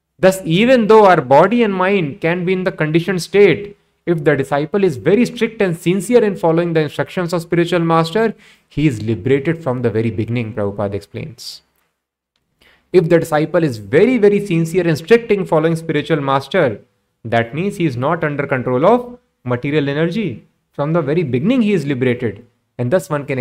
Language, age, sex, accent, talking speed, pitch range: English, 20-39, male, Indian, 180 wpm, 115-170 Hz